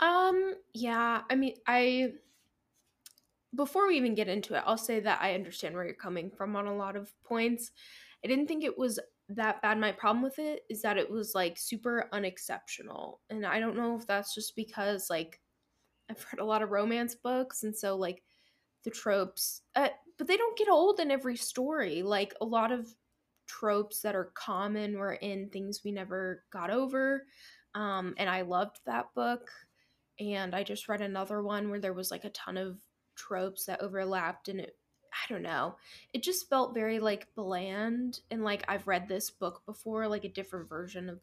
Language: English